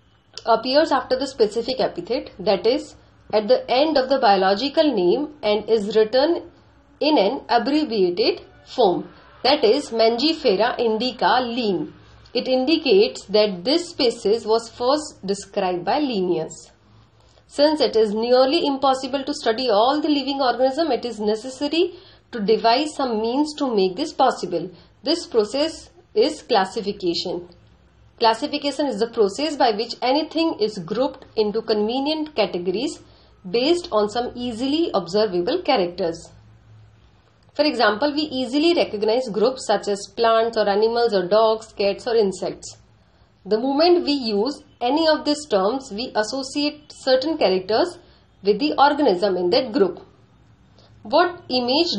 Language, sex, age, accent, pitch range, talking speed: Hindi, female, 40-59, native, 210-290 Hz, 135 wpm